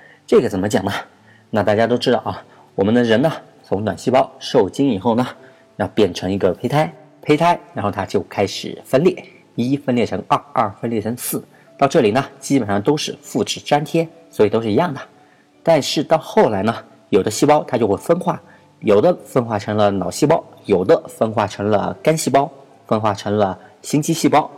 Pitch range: 105-170 Hz